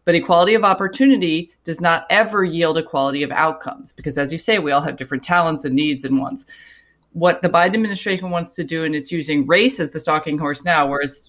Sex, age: female, 30-49